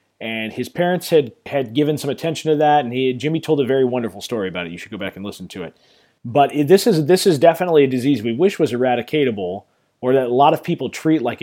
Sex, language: male, English